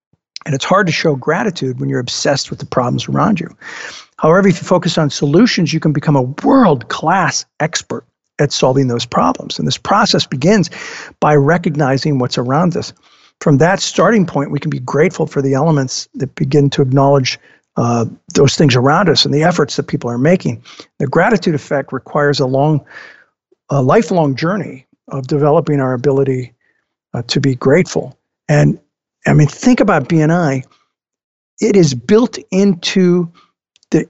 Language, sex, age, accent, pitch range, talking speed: English, male, 50-69, American, 140-175 Hz, 165 wpm